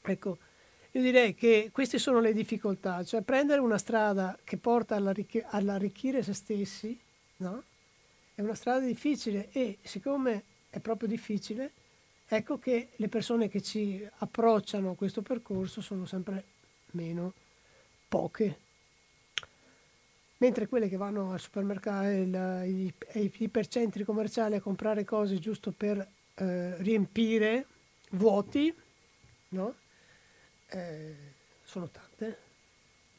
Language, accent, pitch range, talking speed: Italian, native, 190-225 Hz, 120 wpm